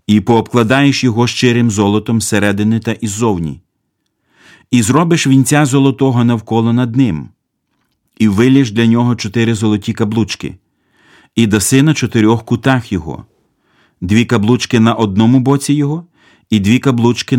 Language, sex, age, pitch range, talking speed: Ukrainian, male, 40-59, 105-130 Hz, 130 wpm